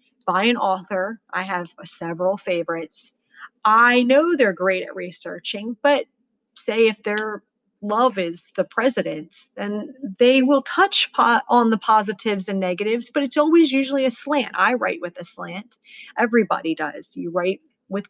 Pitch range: 185-240 Hz